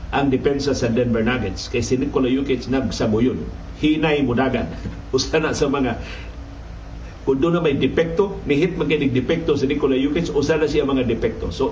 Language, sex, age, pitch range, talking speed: Filipino, male, 50-69, 95-155 Hz, 170 wpm